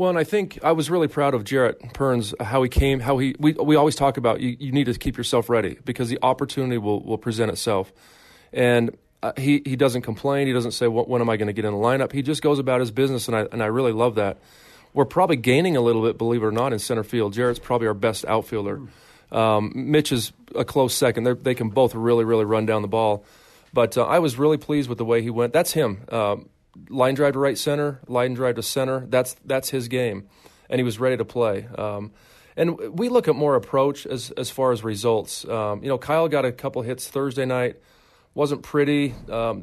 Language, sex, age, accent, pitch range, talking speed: English, male, 30-49, American, 115-140 Hz, 240 wpm